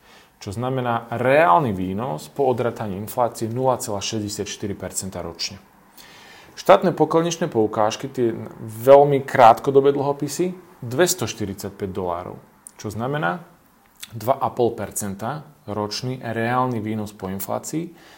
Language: Slovak